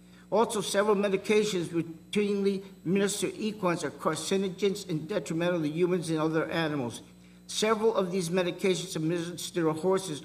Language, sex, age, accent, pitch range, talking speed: English, male, 50-69, American, 165-195 Hz, 130 wpm